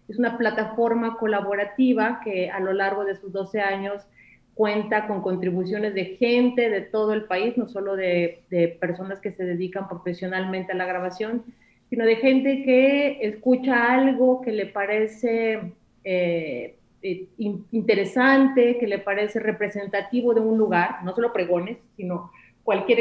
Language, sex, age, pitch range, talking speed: Spanish, female, 30-49, 195-235 Hz, 145 wpm